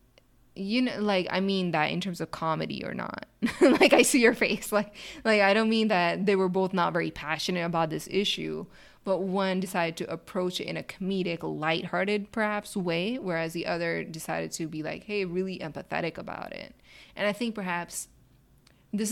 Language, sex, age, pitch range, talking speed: English, female, 20-39, 170-205 Hz, 190 wpm